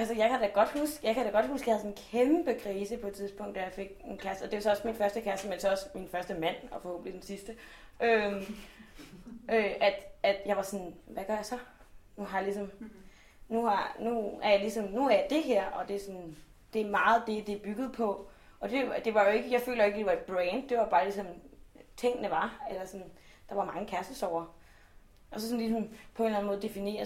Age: 20-39